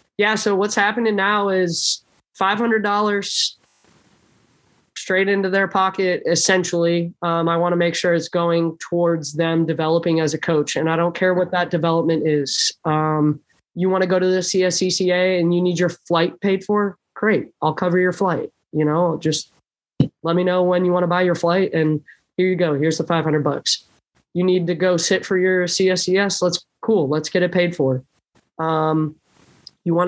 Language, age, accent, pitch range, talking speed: English, 20-39, American, 165-185 Hz, 185 wpm